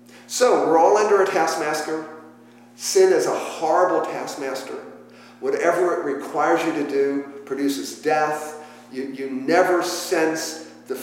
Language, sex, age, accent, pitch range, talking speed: English, male, 50-69, American, 140-230 Hz, 130 wpm